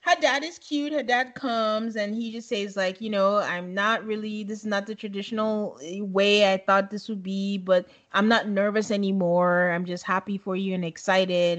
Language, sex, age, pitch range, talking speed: English, female, 20-39, 195-245 Hz, 205 wpm